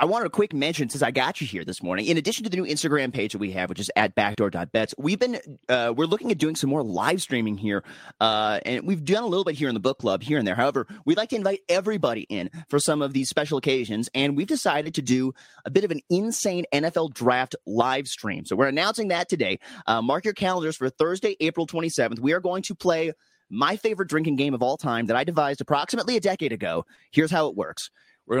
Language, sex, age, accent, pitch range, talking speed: English, male, 30-49, American, 130-185 Hz, 245 wpm